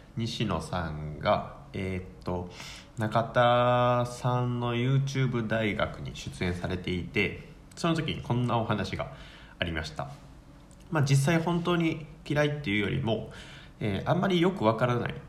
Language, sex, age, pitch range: Japanese, male, 20-39, 95-145 Hz